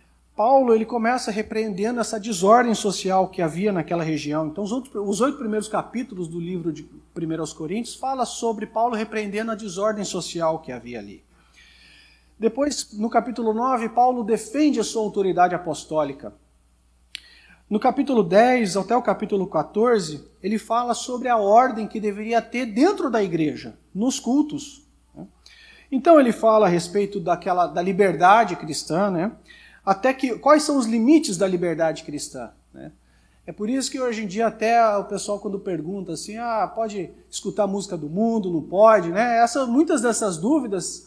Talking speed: 155 wpm